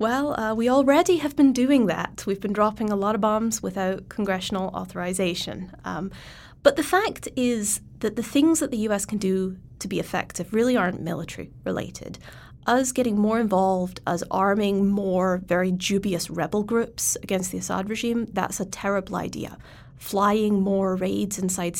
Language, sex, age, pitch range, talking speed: English, female, 20-39, 190-235 Hz, 170 wpm